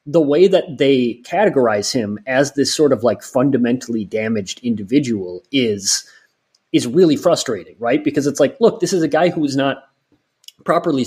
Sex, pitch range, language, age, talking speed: male, 120-170 Hz, English, 30-49, 170 wpm